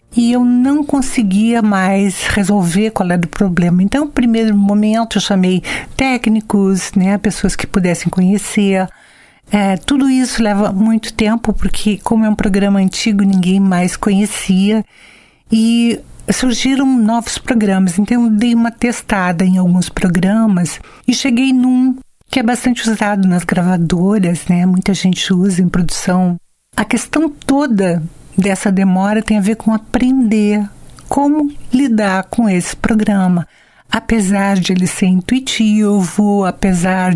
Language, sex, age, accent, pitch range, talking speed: Portuguese, female, 60-79, Brazilian, 190-235 Hz, 135 wpm